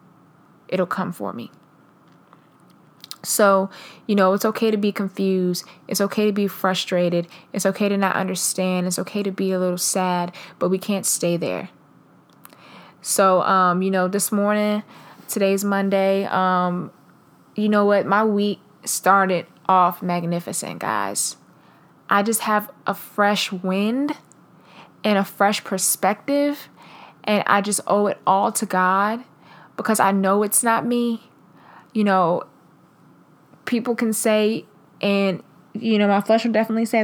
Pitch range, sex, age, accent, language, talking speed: 185-205 Hz, female, 20-39, American, English, 145 wpm